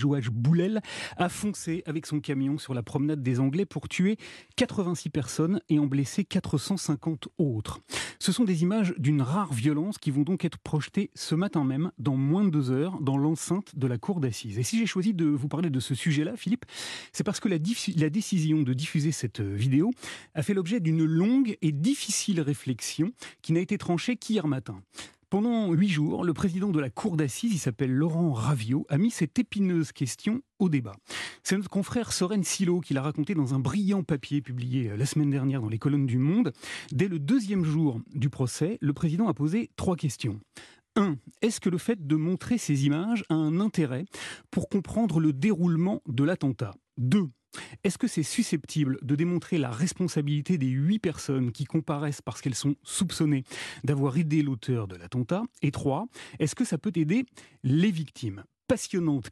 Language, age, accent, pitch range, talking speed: French, 30-49, French, 140-195 Hz, 190 wpm